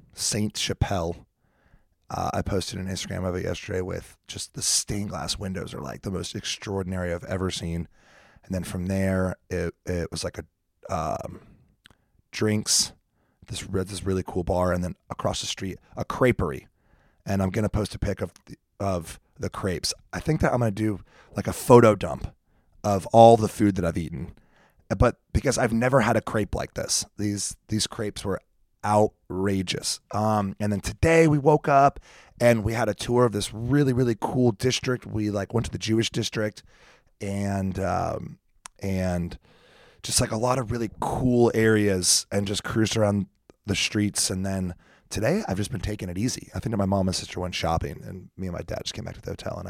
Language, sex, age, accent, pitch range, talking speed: English, male, 30-49, American, 95-115 Hz, 195 wpm